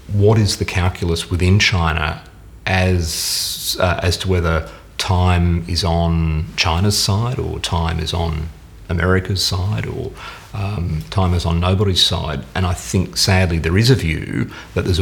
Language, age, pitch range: Swedish, 40-59, 85-95 Hz